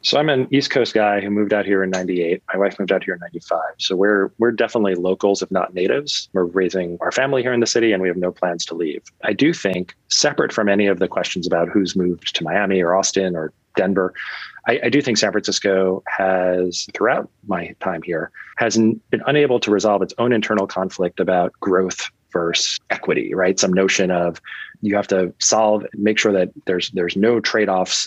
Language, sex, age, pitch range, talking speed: English, male, 30-49, 90-105 Hz, 210 wpm